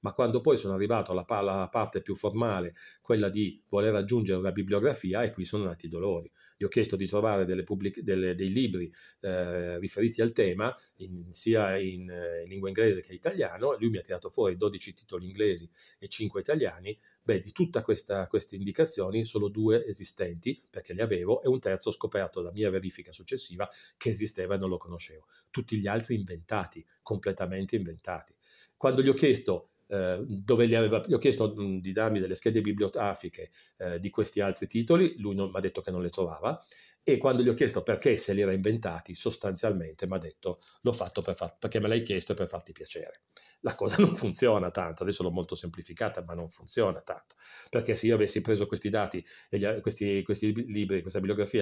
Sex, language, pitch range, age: male, Italian, 95-110 Hz, 40-59